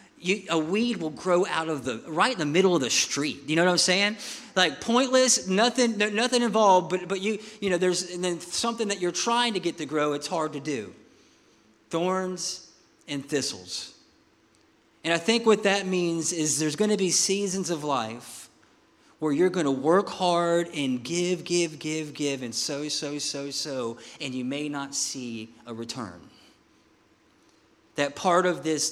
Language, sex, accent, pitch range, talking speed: English, male, American, 135-175 Hz, 185 wpm